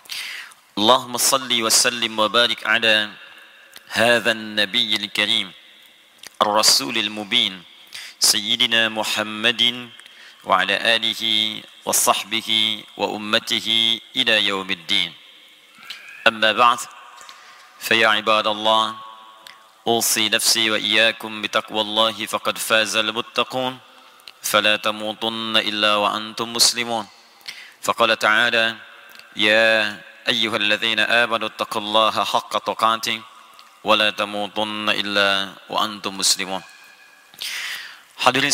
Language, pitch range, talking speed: Indonesian, 105-115 Hz, 65 wpm